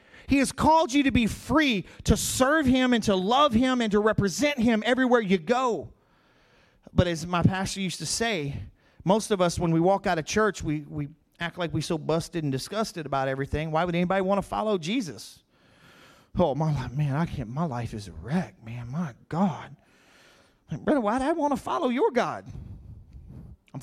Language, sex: English, male